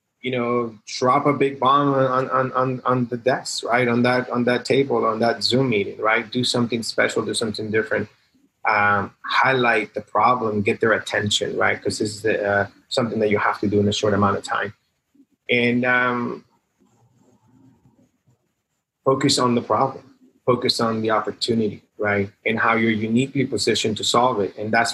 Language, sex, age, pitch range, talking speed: English, male, 30-49, 105-125 Hz, 180 wpm